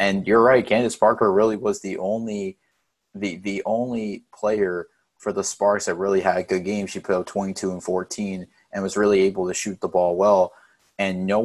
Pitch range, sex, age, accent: 95-115 Hz, male, 30-49, American